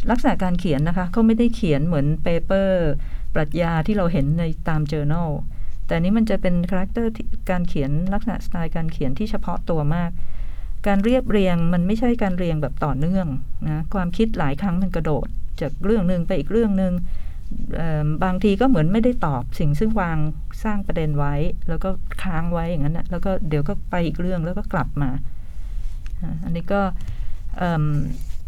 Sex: female